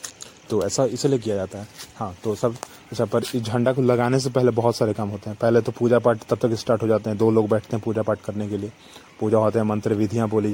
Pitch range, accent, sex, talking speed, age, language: 110-130 Hz, Indian, male, 275 wpm, 30-49, English